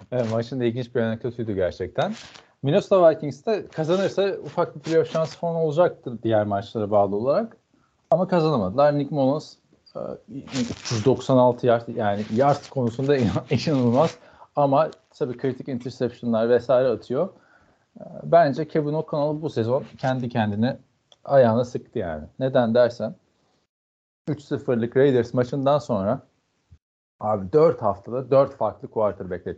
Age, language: 40-59, Turkish